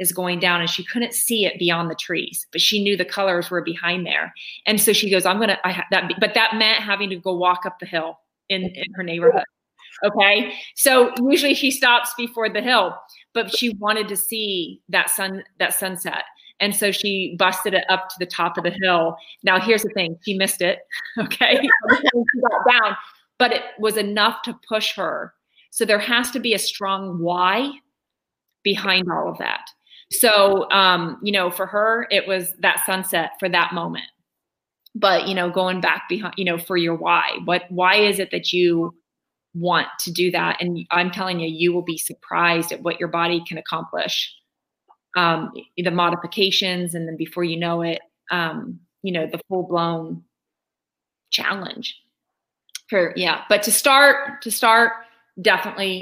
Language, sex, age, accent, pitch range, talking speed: English, female, 30-49, American, 175-215 Hz, 185 wpm